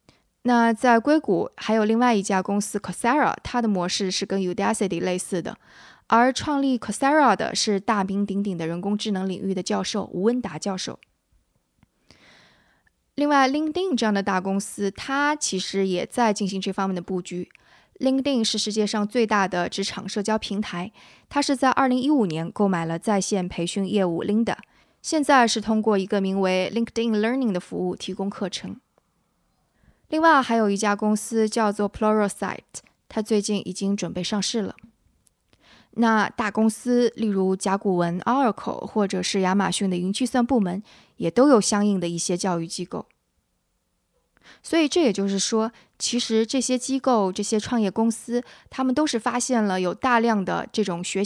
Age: 20-39